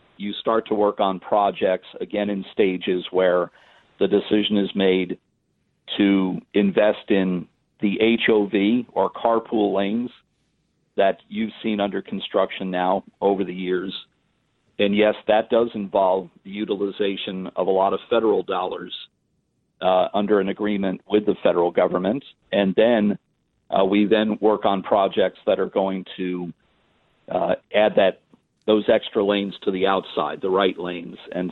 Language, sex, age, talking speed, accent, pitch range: English, male, 50-69, 145 wpm, American, 95-105 Hz